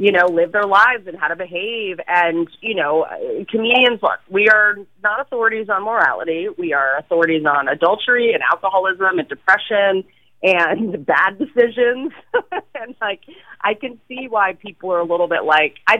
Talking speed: 170 wpm